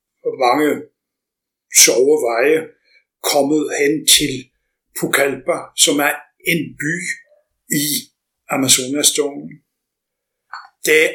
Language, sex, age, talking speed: Danish, male, 60-79, 75 wpm